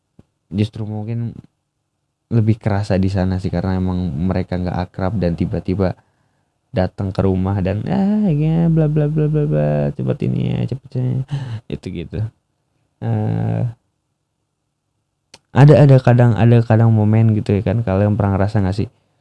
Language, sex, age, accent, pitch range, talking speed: Indonesian, male, 20-39, native, 95-125 Hz, 135 wpm